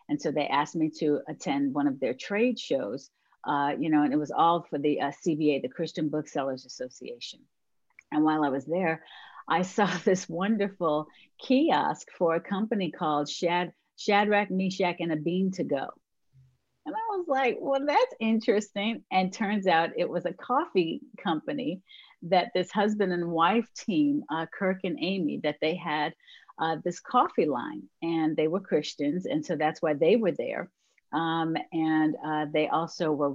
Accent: American